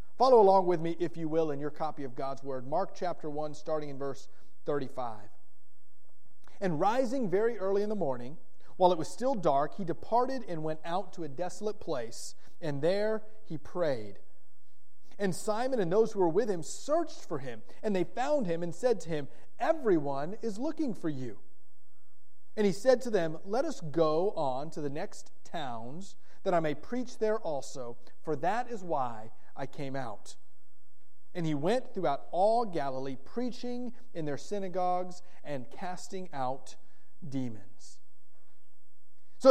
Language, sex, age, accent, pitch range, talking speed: English, male, 30-49, American, 150-220 Hz, 165 wpm